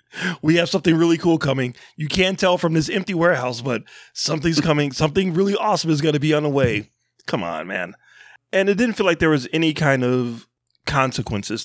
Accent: American